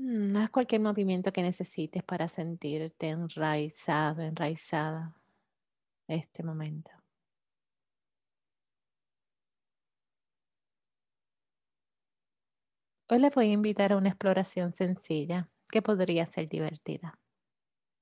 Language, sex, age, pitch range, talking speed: English, female, 30-49, 165-195 Hz, 80 wpm